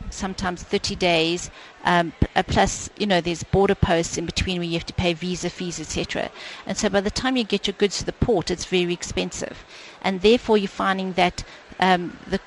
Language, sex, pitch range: English, female, 175-205 Hz